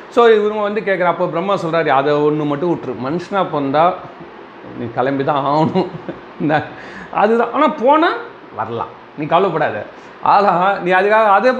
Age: 40-59